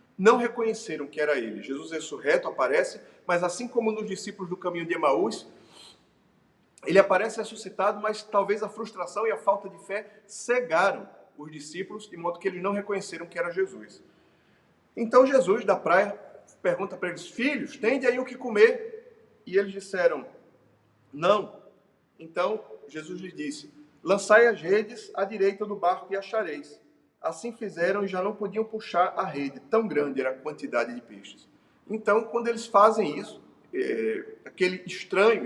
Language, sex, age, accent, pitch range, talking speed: Portuguese, male, 40-59, Brazilian, 180-235 Hz, 160 wpm